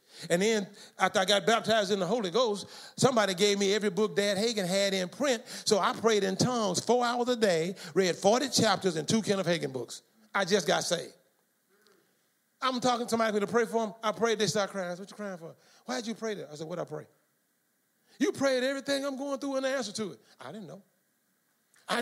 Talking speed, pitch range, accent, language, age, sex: 235 wpm, 205-265 Hz, American, English, 30-49, male